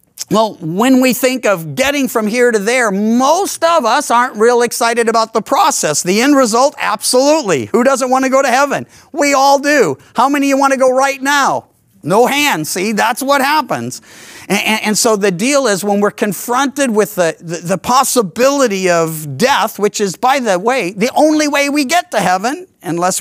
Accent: American